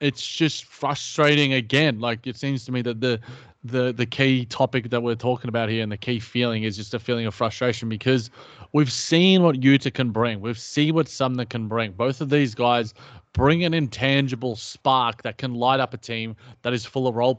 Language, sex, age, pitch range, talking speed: English, male, 20-39, 120-135 Hz, 215 wpm